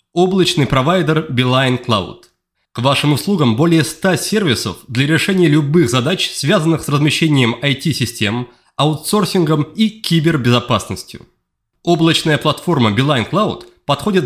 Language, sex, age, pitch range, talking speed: Russian, male, 30-49, 130-180 Hz, 110 wpm